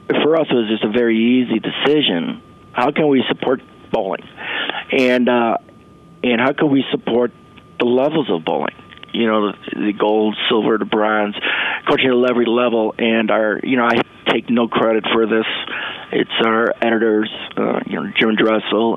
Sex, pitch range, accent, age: male, 110-125 Hz, American, 40-59